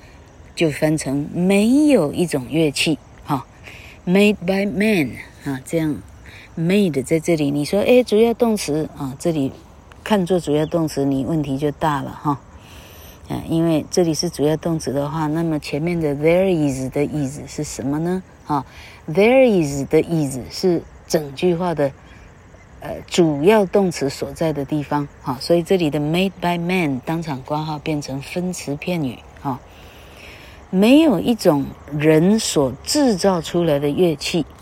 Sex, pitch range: female, 135-180 Hz